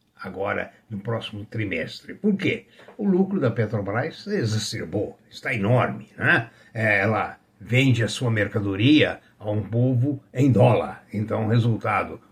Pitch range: 110-135 Hz